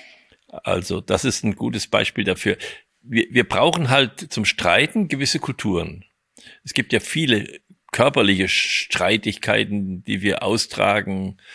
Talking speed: 125 wpm